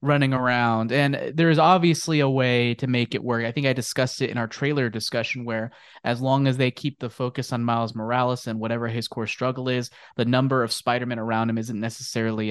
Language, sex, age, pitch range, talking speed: English, male, 20-39, 115-135 Hz, 220 wpm